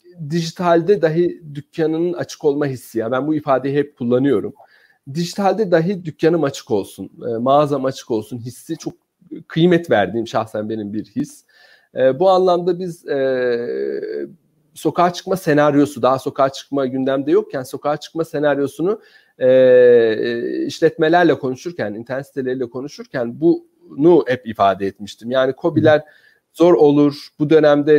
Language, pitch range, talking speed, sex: Turkish, 135-205 Hz, 120 wpm, male